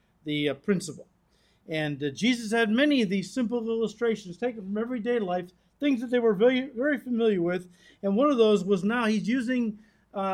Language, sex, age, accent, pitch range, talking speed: English, male, 50-69, American, 185-230 Hz, 190 wpm